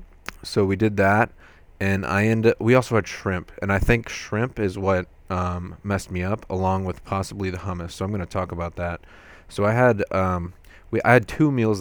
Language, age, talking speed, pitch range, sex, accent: English, 20-39, 215 wpm, 85-100 Hz, male, American